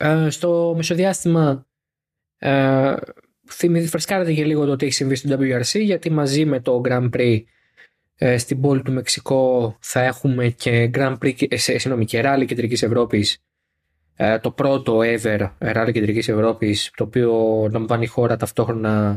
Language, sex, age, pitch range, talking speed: Greek, male, 20-39, 115-150 Hz, 145 wpm